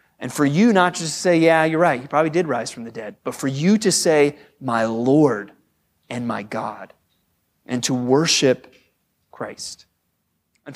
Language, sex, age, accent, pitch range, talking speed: English, male, 30-49, American, 140-195 Hz, 180 wpm